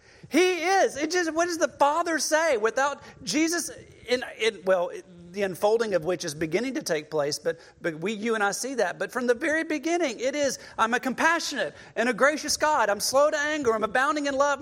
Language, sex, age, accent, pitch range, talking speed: English, male, 40-59, American, 175-280 Hz, 220 wpm